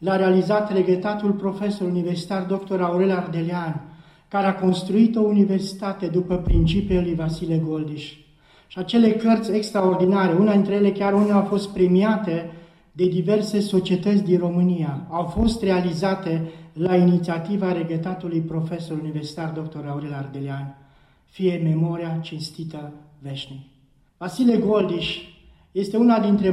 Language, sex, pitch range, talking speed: Romanian, male, 170-205 Hz, 125 wpm